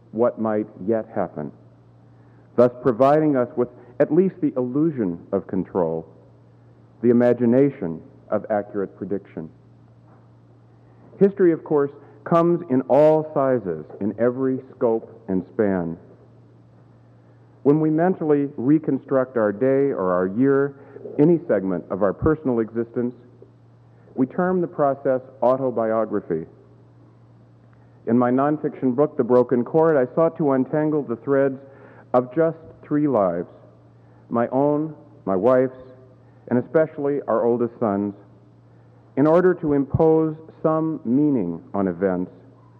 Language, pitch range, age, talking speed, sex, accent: English, 100-140 Hz, 50-69, 120 wpm, male, American